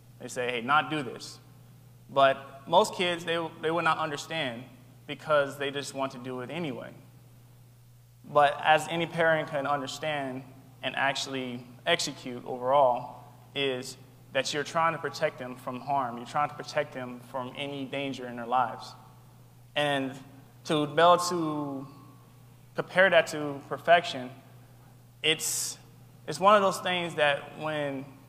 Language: English